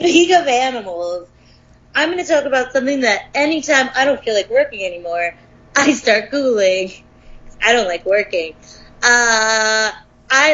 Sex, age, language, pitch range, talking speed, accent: female, 30-49, English, 205-280 Hz, 150 wpm, American